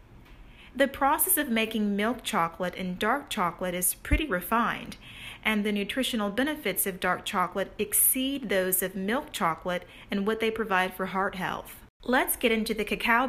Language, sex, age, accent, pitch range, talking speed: English, female, 40-59, American, 185-235 Hz, 165 wpm